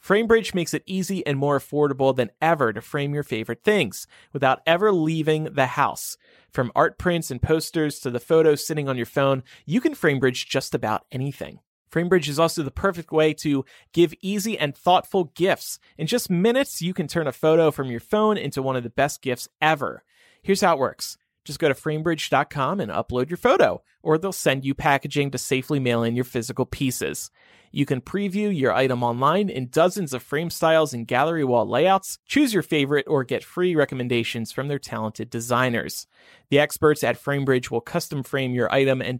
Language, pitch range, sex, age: English, 125-170 Hz, male, 30-49